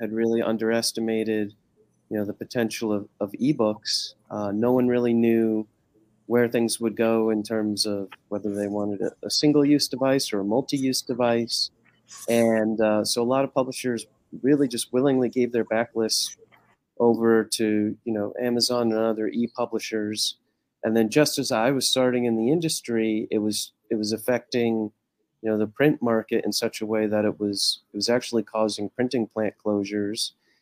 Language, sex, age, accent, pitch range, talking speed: English, male, 30-49, American, 105-125 Hz, 170 wpm